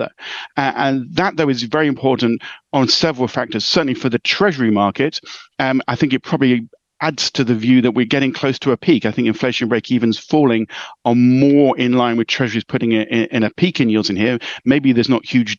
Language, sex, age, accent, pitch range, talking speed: English, male, 40-59, British, 115-130 Hz, 215 wpm